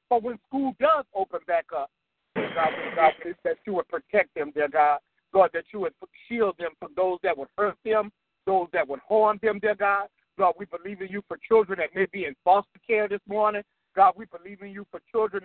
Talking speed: 225 wpm